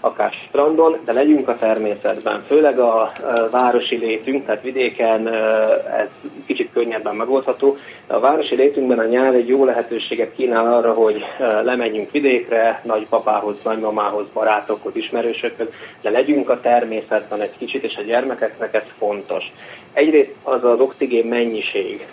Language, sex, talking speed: Hungarian, male, 135 wpm